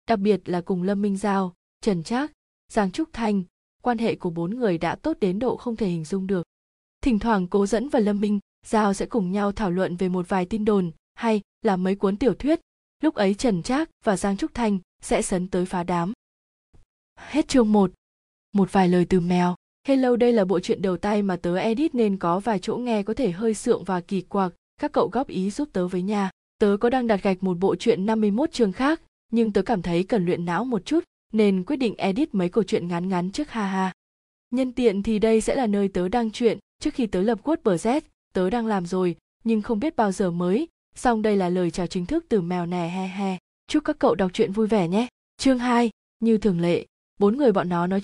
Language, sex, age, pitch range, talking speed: Vietnamese, female, 20-39, 185-235 Hz, 235 wpm